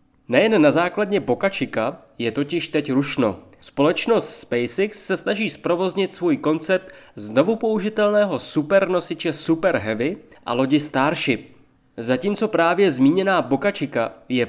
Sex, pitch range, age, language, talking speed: male, 135-195 Hz, 20-39, Czech, 115 wpm